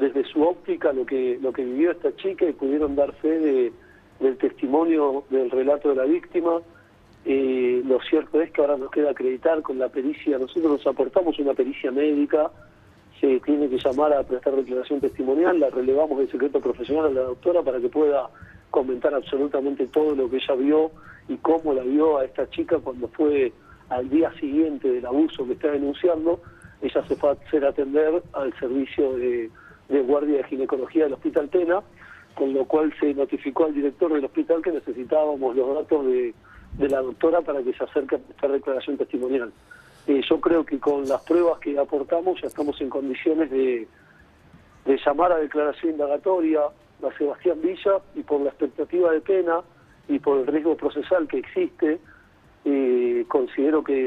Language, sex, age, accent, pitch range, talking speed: Spanish, male, 40-59, Argentinian, 135-170 Hz, 180 wpm